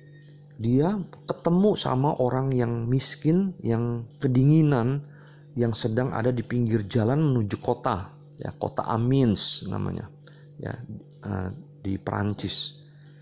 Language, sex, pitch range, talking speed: Indonesian, male, 105-150 Hz, 105 wpm